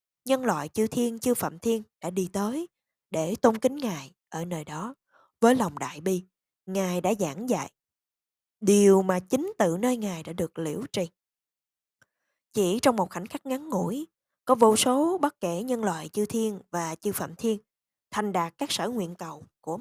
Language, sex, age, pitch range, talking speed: Vietnamese, female, 20-39, 175-240 Hz, 190 wpm